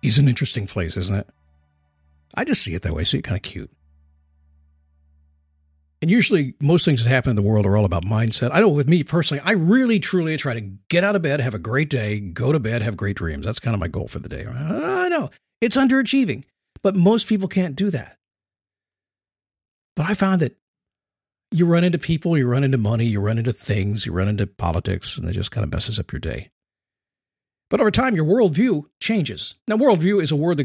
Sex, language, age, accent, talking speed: male, English, 50-69, American, 225 wpm